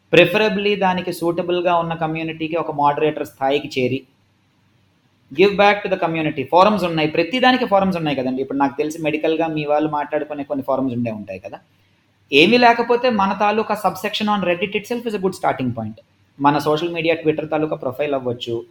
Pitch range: 130-185 Hz